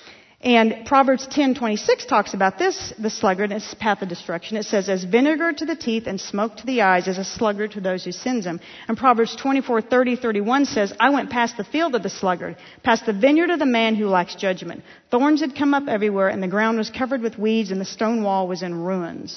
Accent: American